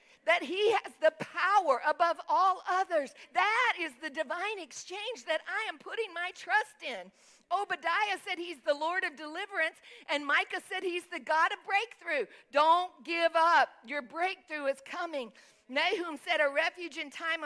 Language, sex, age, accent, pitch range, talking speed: English, female, 50-69, American, 265-375 Hz, 165 wpm